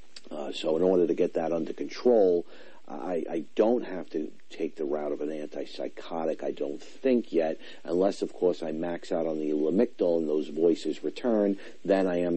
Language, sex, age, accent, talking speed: English, male, 50-69, American, 190 wpm